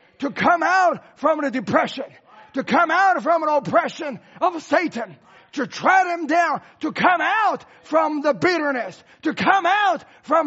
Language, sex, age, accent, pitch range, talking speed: English, male, 40-59, American, 255-325 Hz, 160 wpm